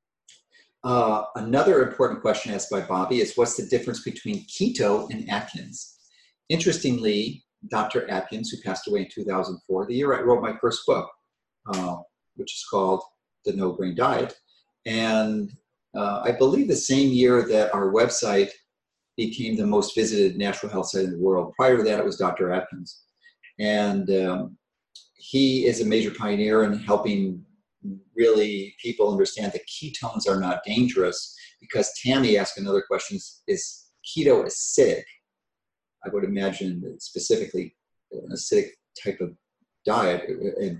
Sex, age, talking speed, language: male, 40-59, 150 wpm, English